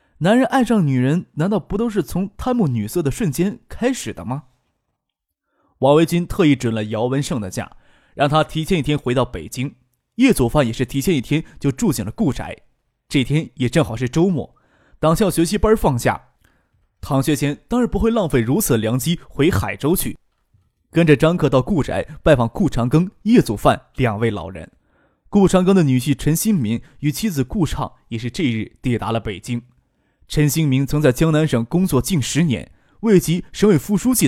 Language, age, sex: Chinese, 20-39, male